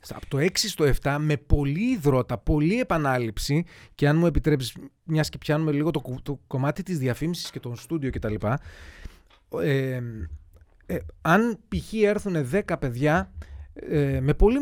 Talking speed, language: 160 wpm, Greek